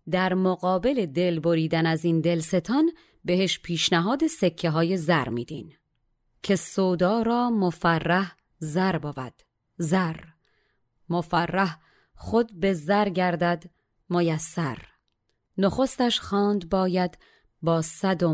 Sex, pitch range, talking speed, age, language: female, 160-195 Hz, 100 wpm, 30-49, Persian